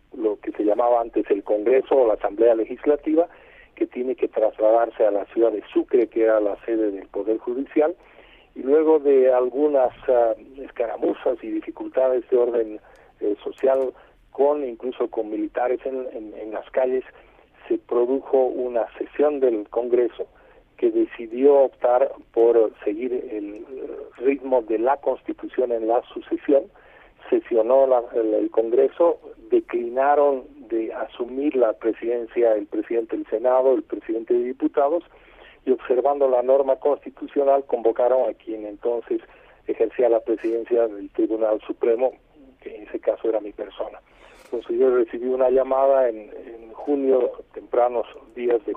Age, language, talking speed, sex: 50-69, Spanish, 145 wpm, male